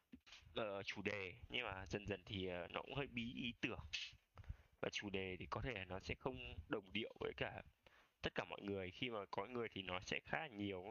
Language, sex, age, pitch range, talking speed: Vietnamese, male, 20-39, 95-125 Hz, 230 wpm